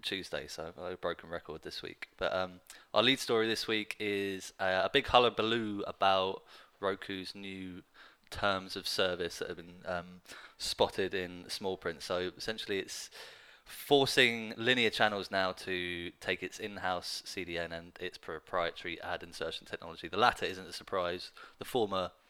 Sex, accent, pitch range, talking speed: male, British, 90-115 Hz, 155 wpm